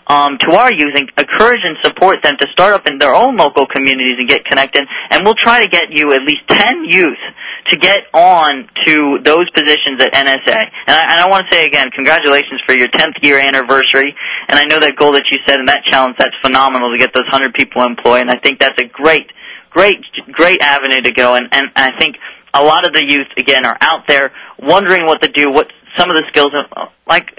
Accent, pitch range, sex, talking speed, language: American, 130-155 Hz, male, 230 wpm, English